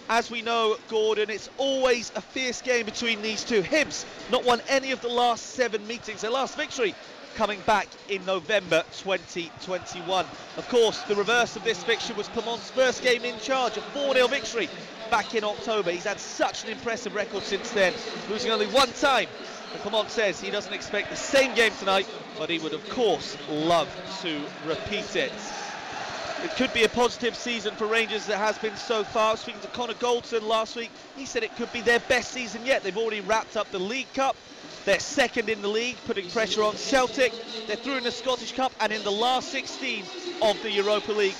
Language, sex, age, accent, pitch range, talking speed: English, male, 30-49, British, 210-245 Hz, 200 wpm